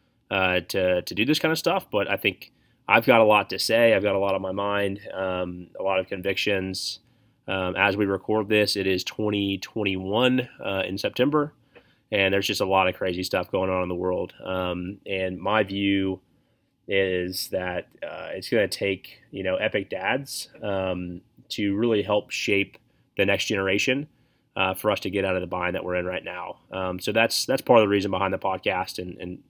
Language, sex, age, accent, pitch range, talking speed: English, male, 30-49, American, 95-110 Hz, 210 wpm